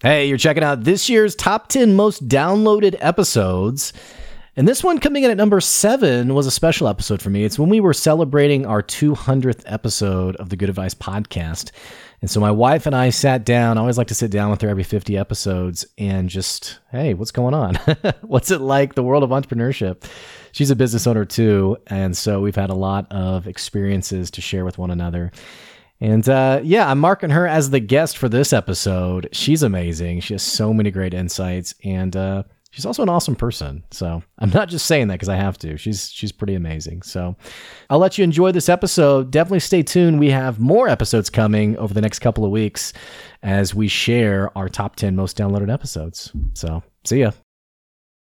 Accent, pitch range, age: American, 95-145 Hz, 30-49